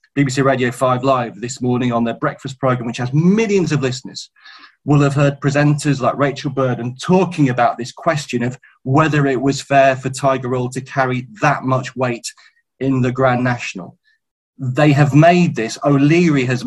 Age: 30-49